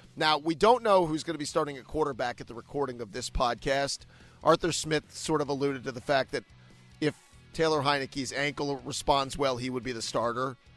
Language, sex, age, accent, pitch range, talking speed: English, male, 40-59, American, 120-155 Hz, 205 wpm